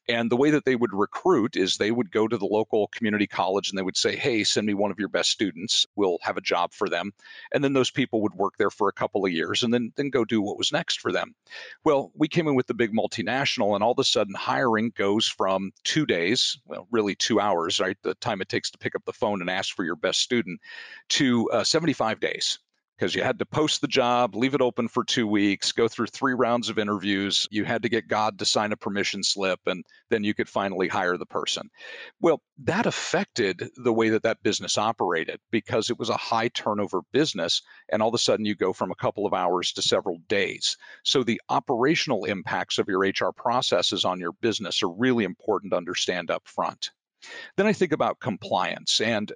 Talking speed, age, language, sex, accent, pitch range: 230 wpm, 40-59, English, male, American, 105-125 Hz